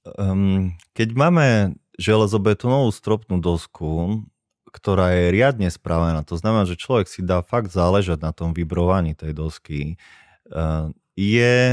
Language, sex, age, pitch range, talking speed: Slovak, male, 20-39, 80-95 Hz, 120 wpm